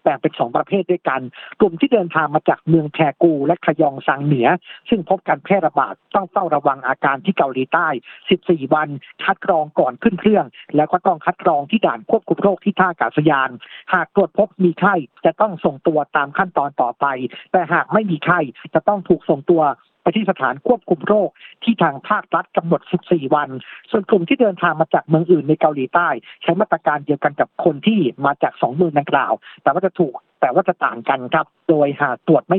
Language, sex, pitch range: Thai, male, 155-195 Hz